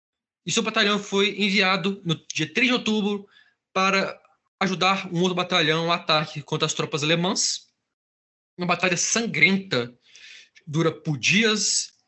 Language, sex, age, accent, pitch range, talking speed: Portuguese, male, 20-39, Brazilian, 155-200 Hz, 135 wpm